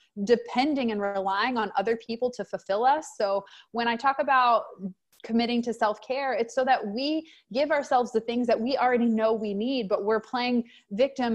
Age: 20-39